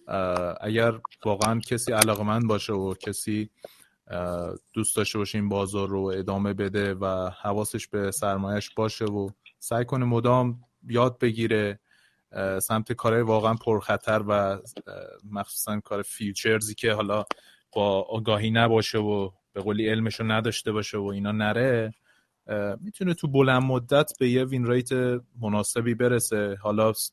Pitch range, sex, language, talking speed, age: 105-115 Hz, male, Persian, 135 wpm, 30-49